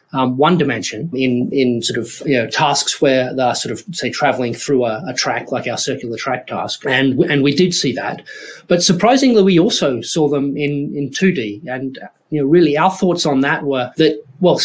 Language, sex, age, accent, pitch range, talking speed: English, male, 30-49, Australian, 130-160 Hz, 210 wpm